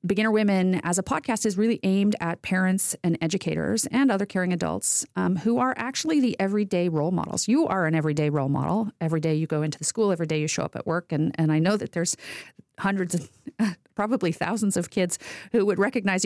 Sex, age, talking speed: female, 40-59, 215 wpm